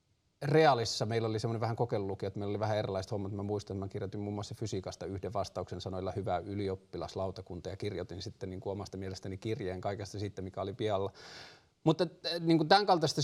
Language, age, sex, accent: Finnish, 30-49, male, native